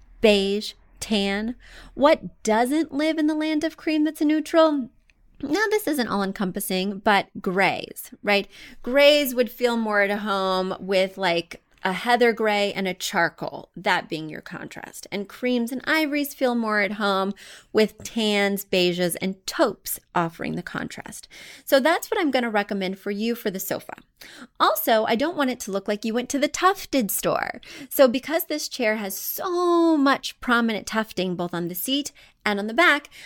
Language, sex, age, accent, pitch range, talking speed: English, female, 30-49, American, 200-275 Hz, 175 wpm